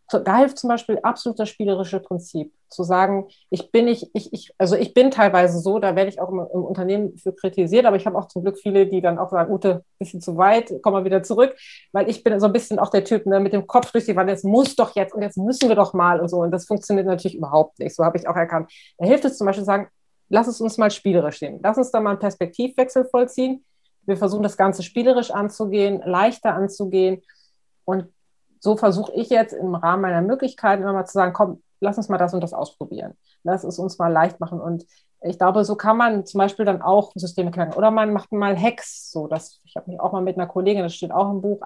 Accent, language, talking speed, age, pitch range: German, German, 250 wpm, 30-49, 180-215 Hz